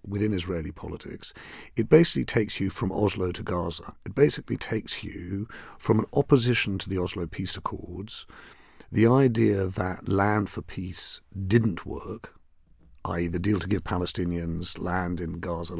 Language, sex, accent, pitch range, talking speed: English, male, British, 85-110 Hz, 150 wpm